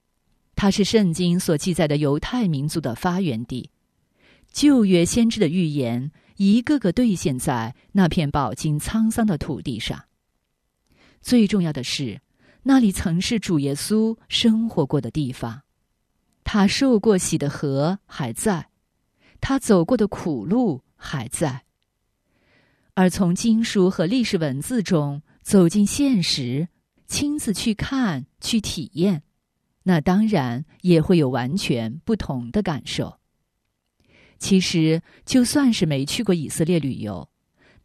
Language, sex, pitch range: Chinese, female, 145-215 Hz